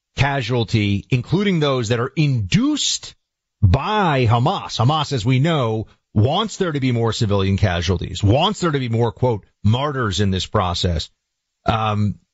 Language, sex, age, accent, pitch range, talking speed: English, male, 40-59, American, 100-130 Hz, 145 wpm